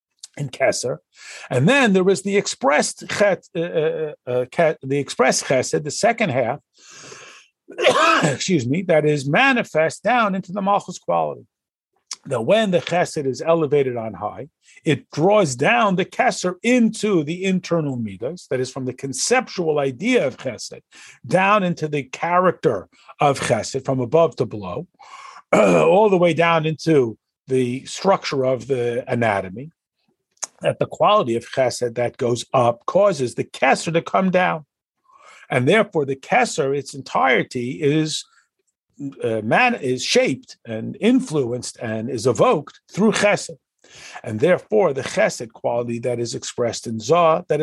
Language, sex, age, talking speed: English, male, 50-69, 145 wpm